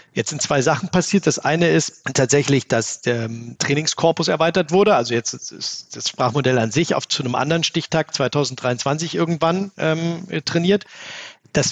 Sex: male